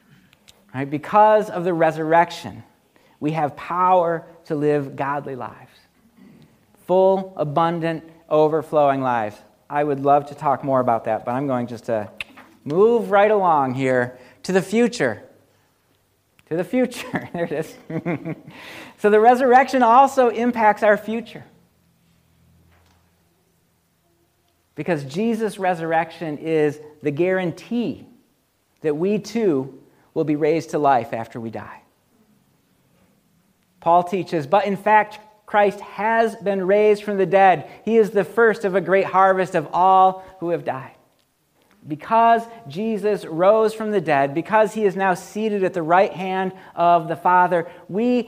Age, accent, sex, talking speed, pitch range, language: 40-59, American, male, 135 wpm, 150-205 Hz, English